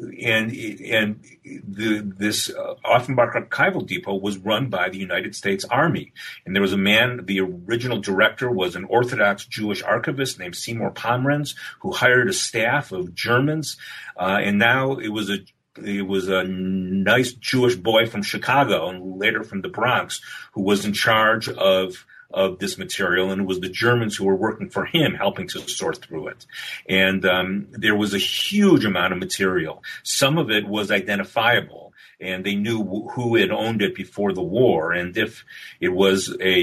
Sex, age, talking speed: male, 40-59, 180 wpm